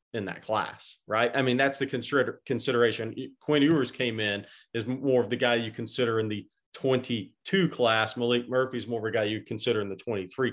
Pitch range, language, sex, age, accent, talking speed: 110-135 Hz, English, male, 40-59, American, 205 wpm